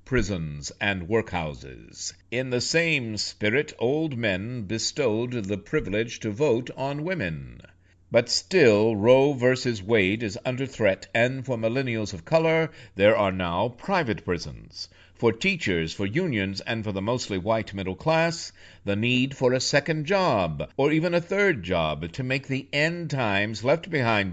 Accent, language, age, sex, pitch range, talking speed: American, English, 60-79, male, 95-130 Hz, 155 wpm